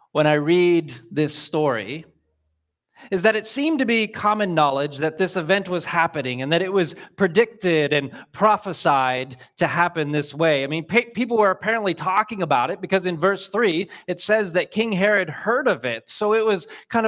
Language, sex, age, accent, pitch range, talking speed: English, male, 30-49, American, 160-210 Hz, 185 wpm